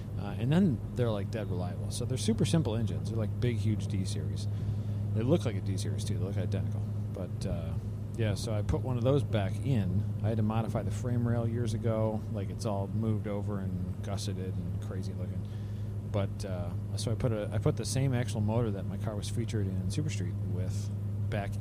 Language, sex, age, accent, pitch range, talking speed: English, male, 40-59, American, 100-110 Hz, 215 wpm